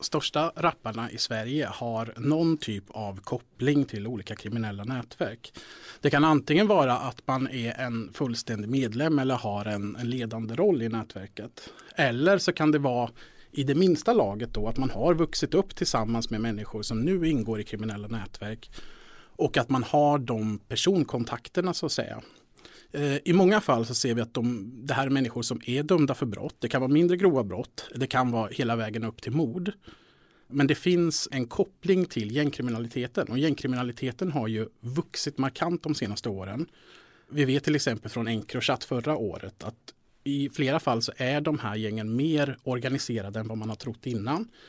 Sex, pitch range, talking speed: male, 115-150 Hz, 180 wpm